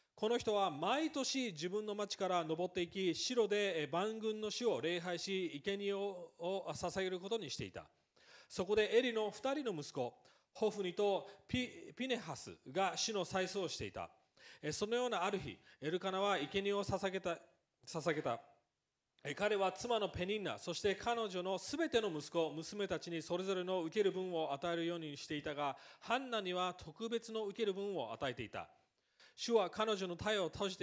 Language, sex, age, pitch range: English, male, 40-59, 165-210 Hz